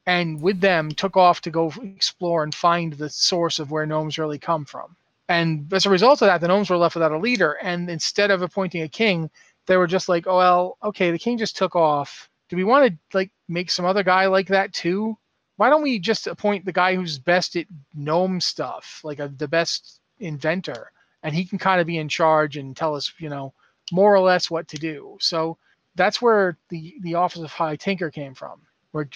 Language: English